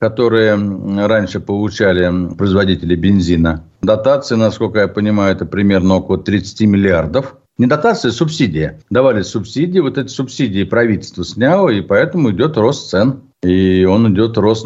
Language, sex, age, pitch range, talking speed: Russian, male, 60-79, 90-110 Hz, 140 wpm